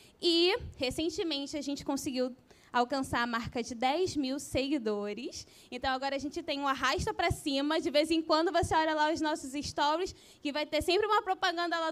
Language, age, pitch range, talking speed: Portuguese, 20-39, 275-345 Hz, 190 wpm